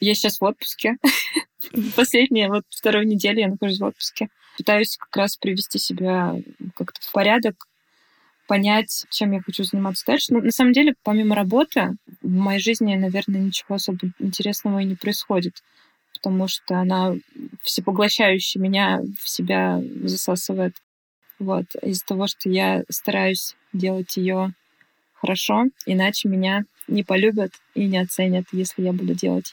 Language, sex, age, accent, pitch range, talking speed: Russian, female, 20-39, native, 190-220 Hz, 140 wpm